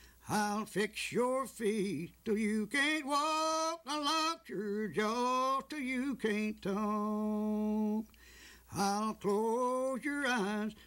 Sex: male